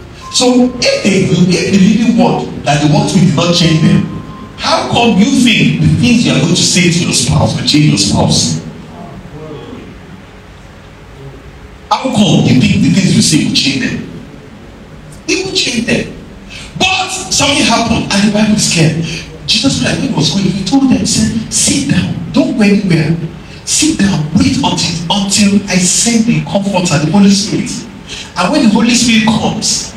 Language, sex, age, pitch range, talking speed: English, male, 50-69, 165-225 Hz, 180 wpm